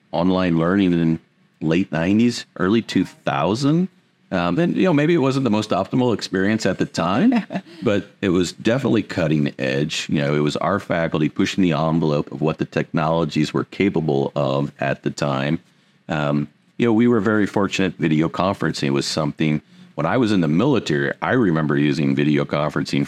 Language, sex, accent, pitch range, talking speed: English, male, American, 75-95 Hz, 175 wpm